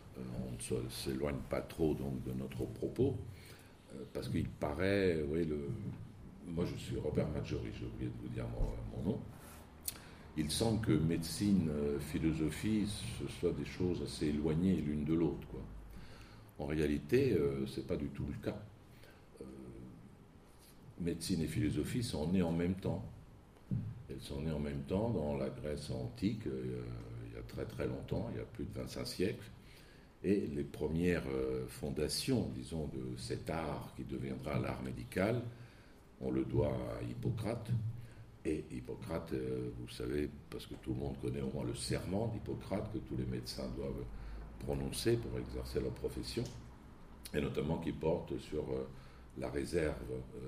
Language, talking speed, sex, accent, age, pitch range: French, 160 wpm, male, French, 60-79, 65-85 Hz